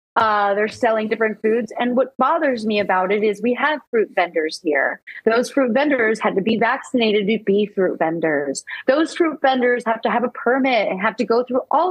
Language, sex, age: English, female, 30-49